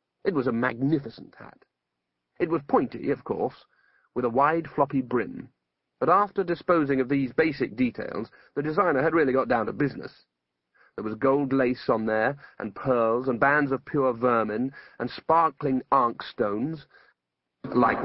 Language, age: English, 40-59